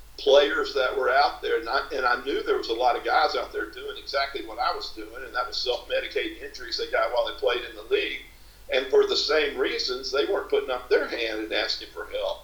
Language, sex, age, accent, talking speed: English, male, 50-69, American, 245 wpm